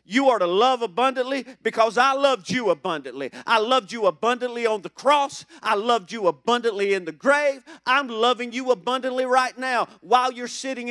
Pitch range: 160-245 Hz